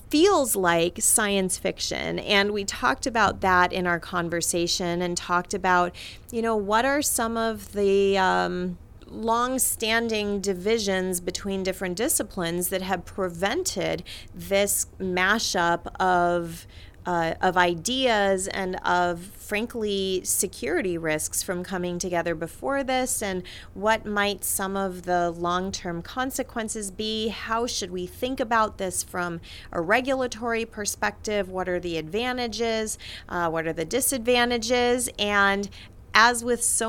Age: 30-49